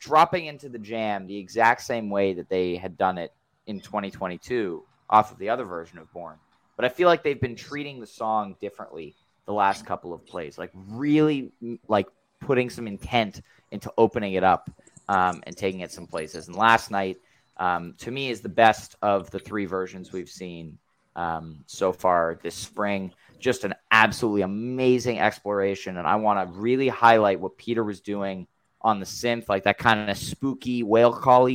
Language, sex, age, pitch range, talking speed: English, male, 20-39, 95-120 Hz, 185 wpm